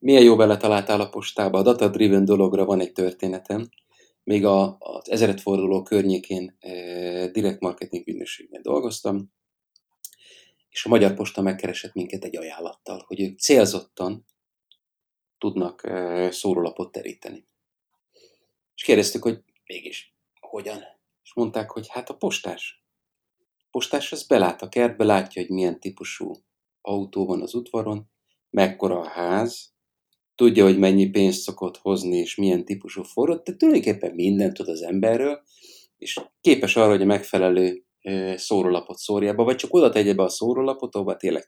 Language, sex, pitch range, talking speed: Hungarian, male, 95-110 Hz, 145 wpm